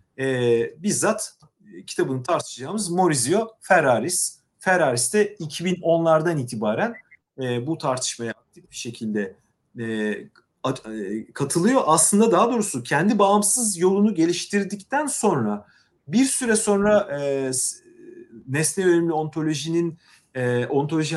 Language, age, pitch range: Turkish, 40-59, 125-200 Hz